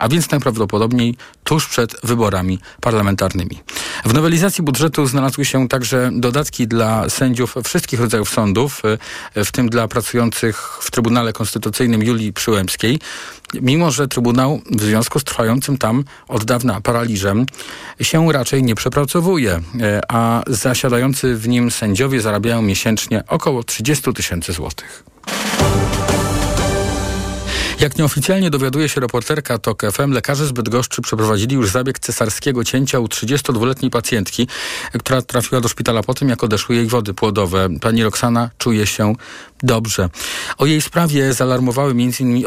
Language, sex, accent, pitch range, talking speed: Polish, male, native, 110-130 Hz, 135 wpm